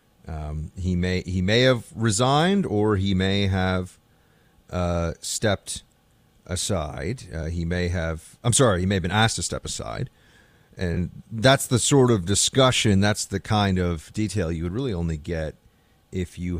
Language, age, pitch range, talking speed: English, 40-59, 90-125 Hz, 165 wpm